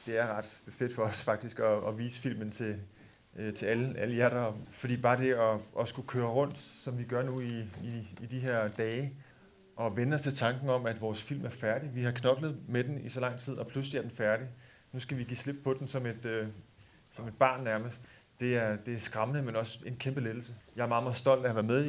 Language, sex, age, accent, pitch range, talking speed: Danish, male, 30-49, native, 110-130 Hz, 255 wpm